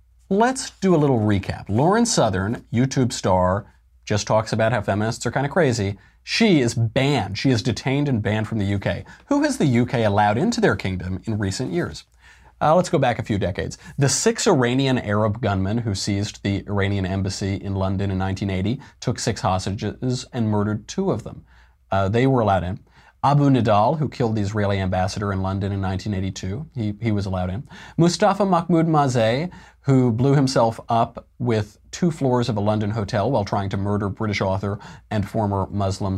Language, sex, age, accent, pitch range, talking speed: English, male, 30-49, American, 100-130 Hz, 185 wpm